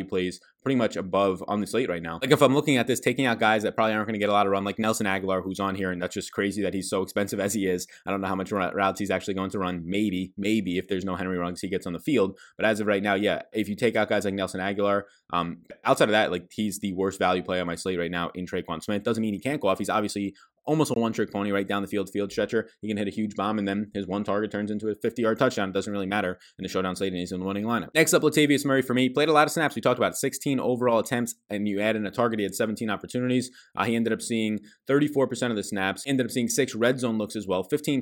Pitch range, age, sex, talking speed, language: 95-115 Hz, 20-39, male, 305 wpm, English